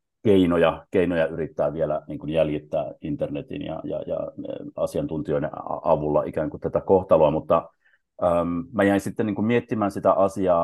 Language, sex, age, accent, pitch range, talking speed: Finnish, male, 30-49, native, 80-95 Hz, 140 wpm